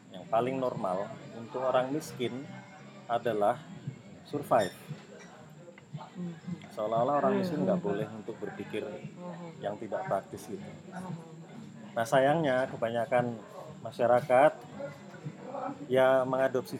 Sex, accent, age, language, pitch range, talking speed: male, native, 30-49, Indonesian, 125-170 Hz, 90 wpm